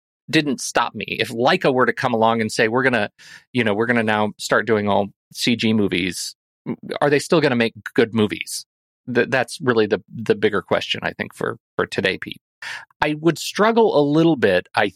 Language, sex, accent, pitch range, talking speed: English, male, American, 105-135 Hz, 200 wpm